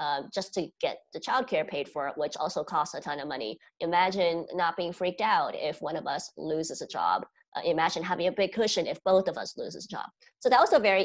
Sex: female